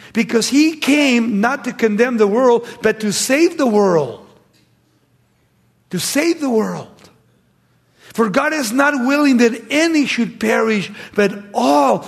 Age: 50-69